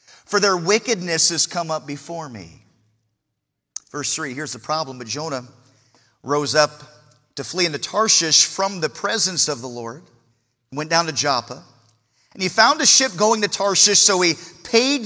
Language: English